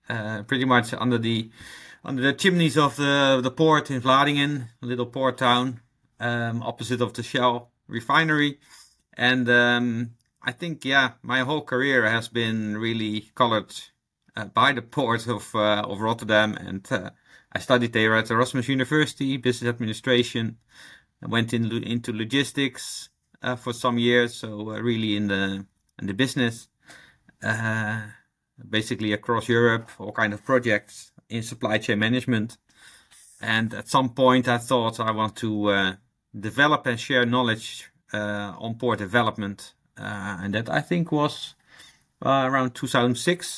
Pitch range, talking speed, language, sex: 110-130 Hz, 155 wpm, English, male